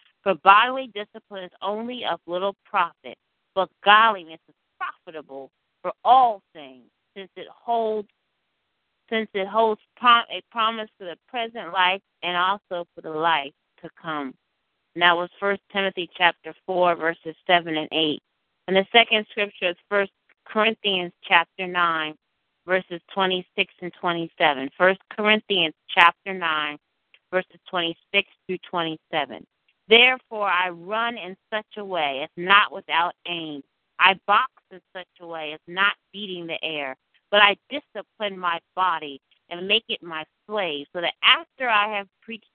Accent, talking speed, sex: American, 150 wpm, female